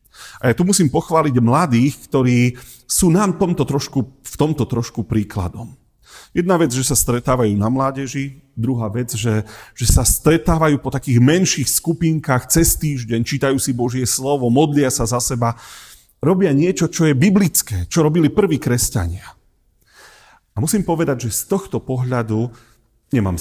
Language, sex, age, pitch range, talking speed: Slovak, male, 40-59, 105-135 Hz, 150 wpm